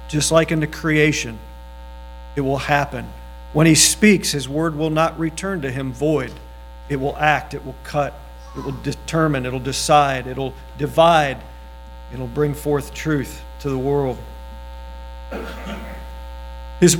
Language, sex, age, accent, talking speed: English, male, 50-69, American, 140 wpm